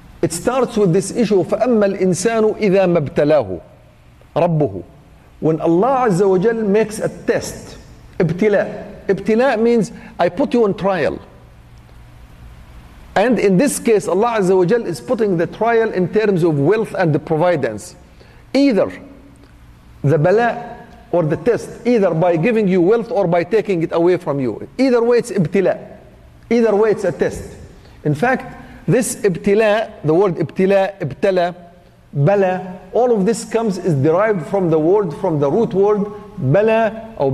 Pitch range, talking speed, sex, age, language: 175-220 Hz, 135 wpm, male, 50-69, English